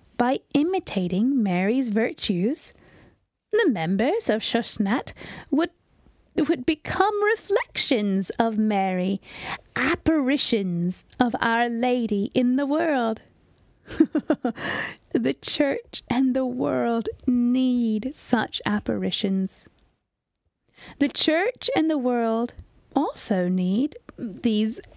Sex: female